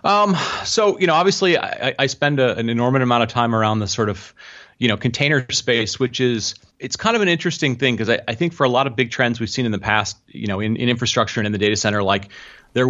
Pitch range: 105-130 Hz